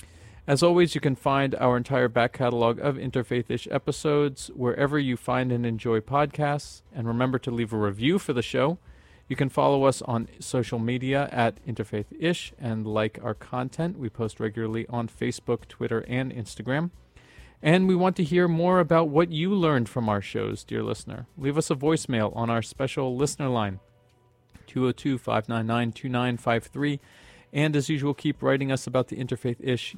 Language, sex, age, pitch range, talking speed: English, male, 40-59, 115-140 Hz, 165 wpm